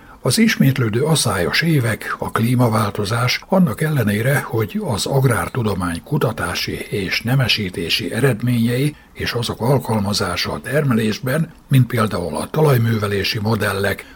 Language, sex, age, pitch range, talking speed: Hungarian, male, 60-79, 100-135 Hz, 105 wpm